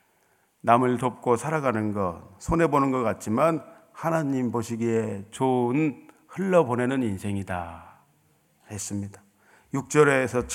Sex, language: male, Korean